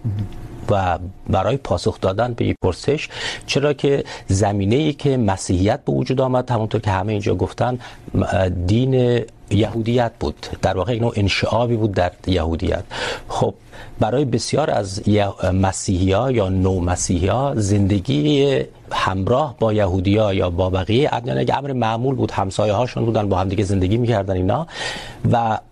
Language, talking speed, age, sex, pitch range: Urdu, 140 wpm, 50-69, male, 95-120 Hz